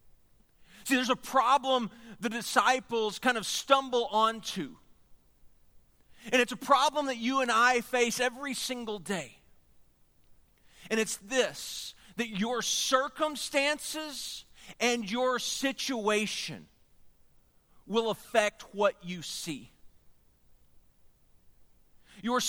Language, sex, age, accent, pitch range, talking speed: English, male, 40-59, American, 215-270 Hz, 100 wpm